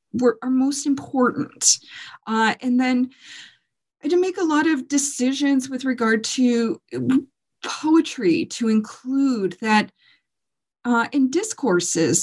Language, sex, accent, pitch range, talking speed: English, female, American, 205-275 Hz, 120 wpm